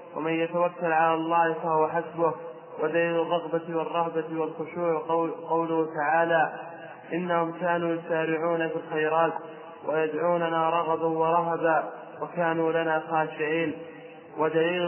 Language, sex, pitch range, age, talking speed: Arabic, male, 160-170 Hz, 20-39, 95 wpm